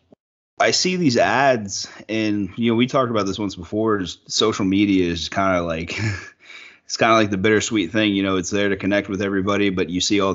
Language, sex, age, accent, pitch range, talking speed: English, male, 30-49, American, 95-110 Hz, 220 wpm